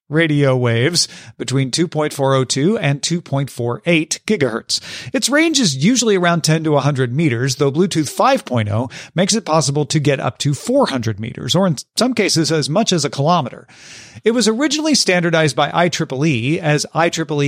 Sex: male